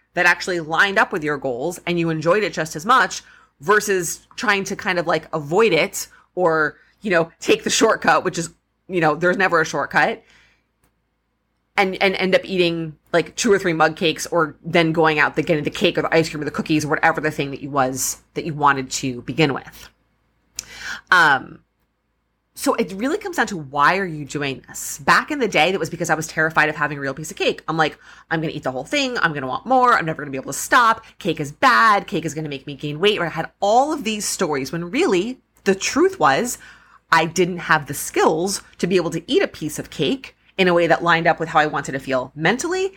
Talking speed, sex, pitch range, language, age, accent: 245 wpm, female, 155-195 Hz, English, 30-49, American